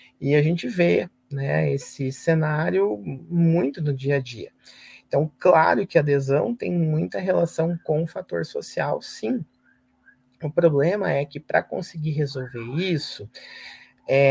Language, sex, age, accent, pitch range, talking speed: Portuguese, male, 30-49, Brazilian, 145-175 Hz, 145 wpm